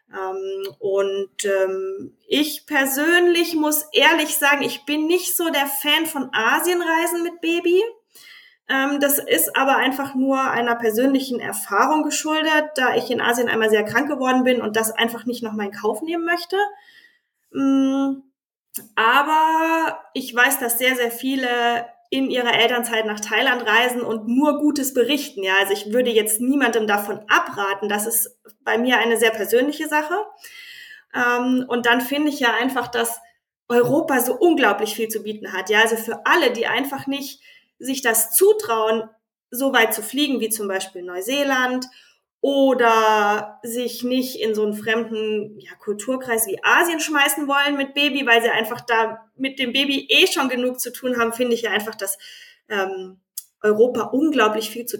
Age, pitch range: 20-39, 225-285 Hz